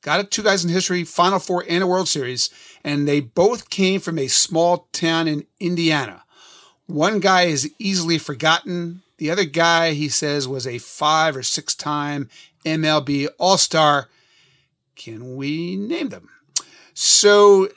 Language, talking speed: English, 145 wpm